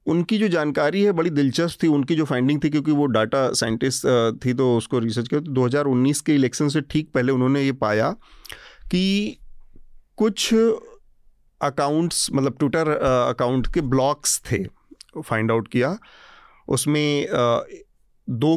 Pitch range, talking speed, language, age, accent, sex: 120-155 Hz, 140 wpm, Hindi, 40-59, native, male